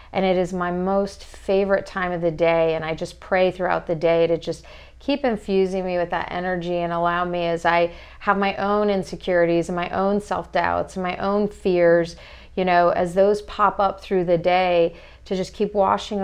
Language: English